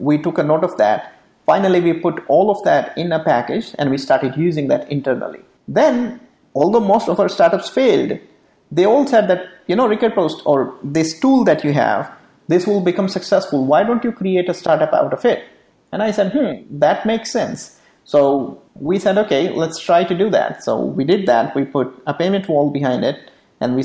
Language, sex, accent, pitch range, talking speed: English, male, Indian, 140-205 Hz, 210 wpm